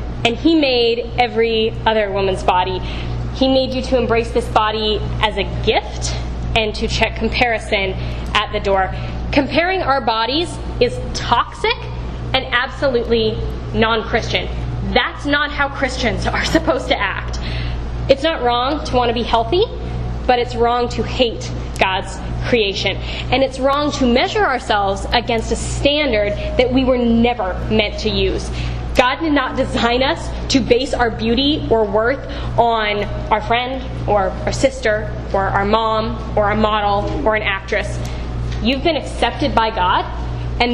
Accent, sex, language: American, female, English